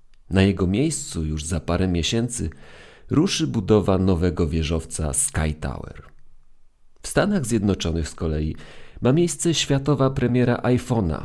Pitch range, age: 80-120 Hz, 40-59